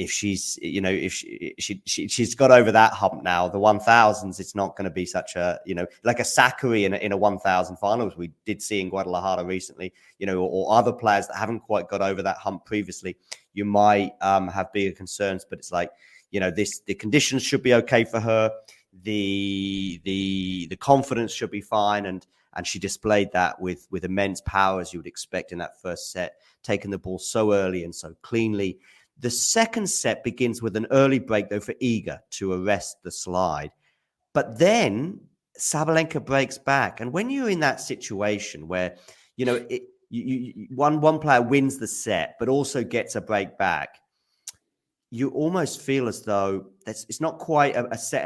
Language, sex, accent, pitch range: English, male, British, 95-120 Hz